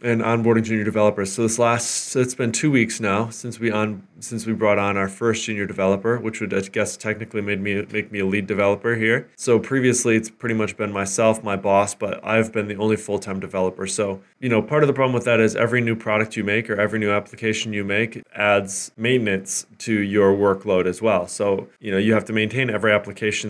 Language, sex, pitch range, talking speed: English, male, 100-115 Hz, 225 wpm